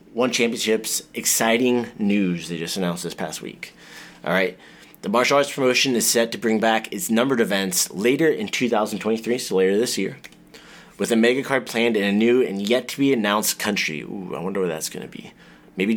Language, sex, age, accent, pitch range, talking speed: English, male, 30-49, American, 100-120 Hz, 190 wpm